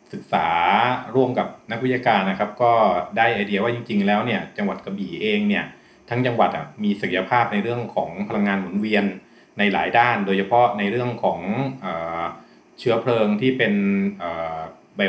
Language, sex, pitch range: Thai, male, 100-130 Hz